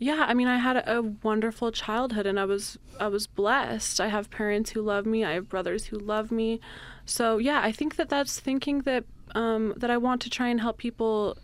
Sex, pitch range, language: female, 195-220 Hz, English